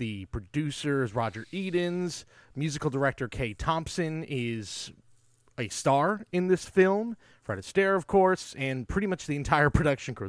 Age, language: 30-49, English